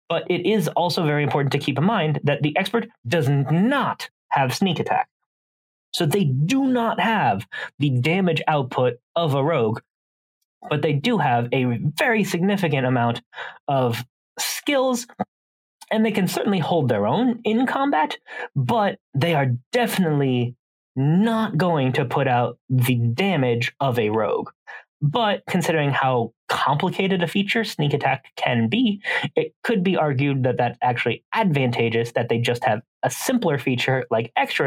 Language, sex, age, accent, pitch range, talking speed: English, male, 20-39, American, 125-200 Hz, 155 wpm